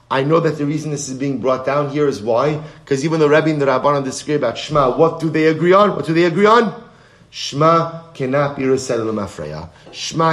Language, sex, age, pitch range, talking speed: English, male, 30-49, 135-170 Hz, 225 wpm